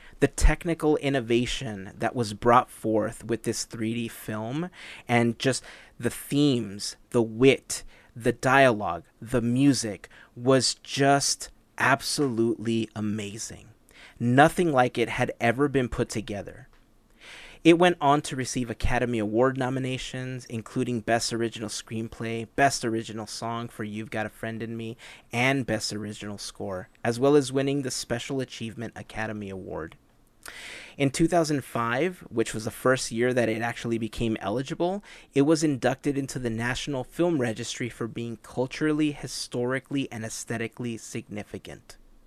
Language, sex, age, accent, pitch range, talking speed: English, male, 30-49, American, 115-135 Hz, 135 wpm